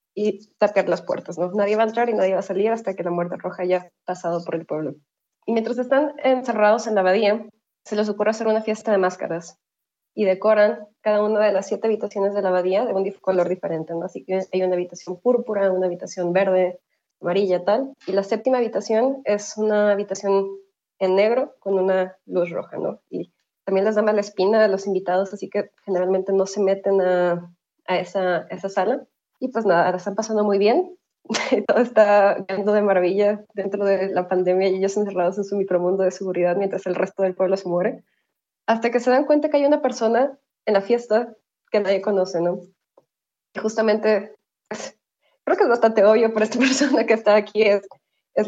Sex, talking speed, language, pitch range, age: female, 205 wpm, Spanish, 185-215 Hz, 20-39